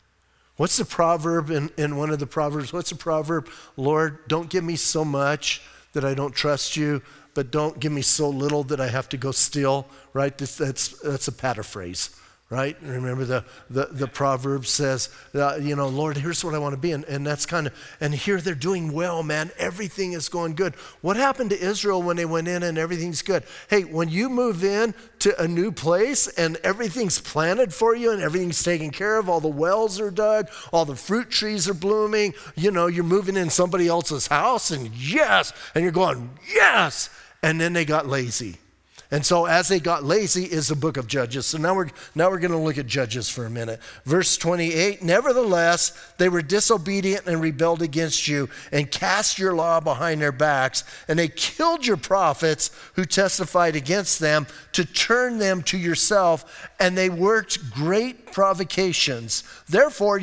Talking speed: 190 wpm